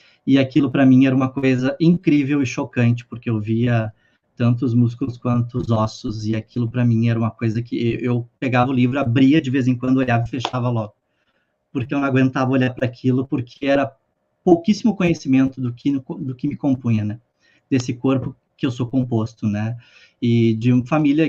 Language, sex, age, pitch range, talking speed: Portuguese, male, 20-39, 115-140 Hz, 190 wpm